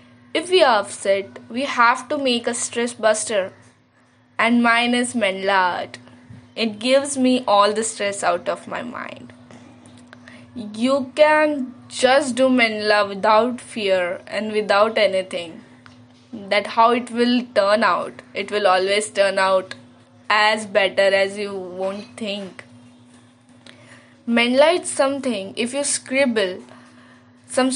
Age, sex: 10-29, female